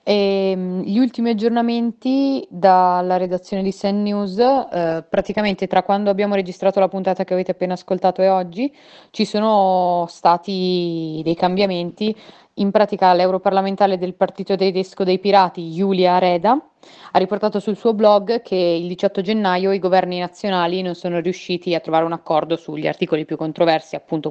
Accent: native